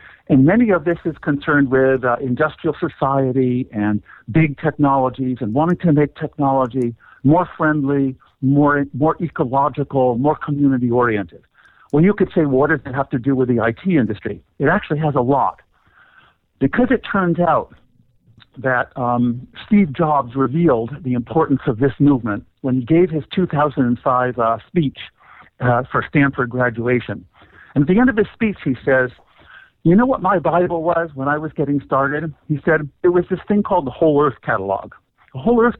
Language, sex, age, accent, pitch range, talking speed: English, male, 50-69, American, 125-160 Hz, 175 wpm